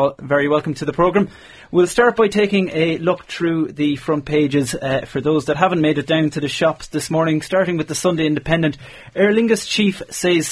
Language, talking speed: English, 210 wpm